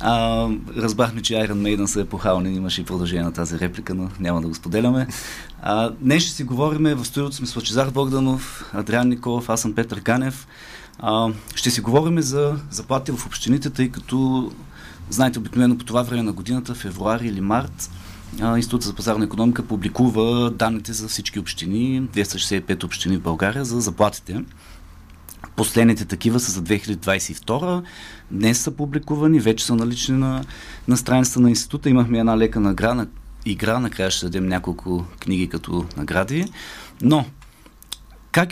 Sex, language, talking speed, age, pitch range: male, Bulgarian, 155 wpm, 30-49, 95-130 Hz